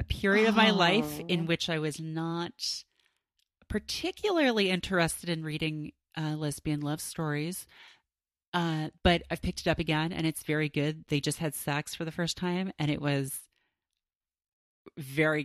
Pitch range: 155-180 Hz